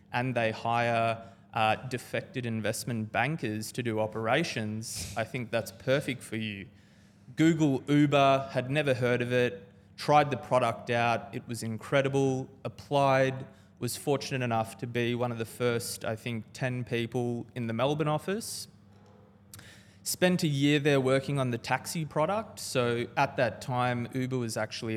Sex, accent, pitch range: male, Australian, 110-135 Hz